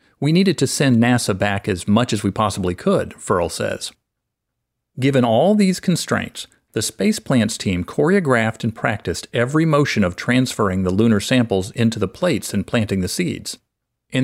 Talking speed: 170 wpm